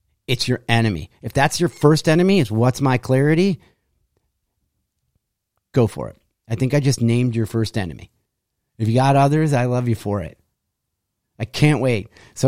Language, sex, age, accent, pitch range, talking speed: English, male, 30-49, American, 110-135 Hz, 175 wpm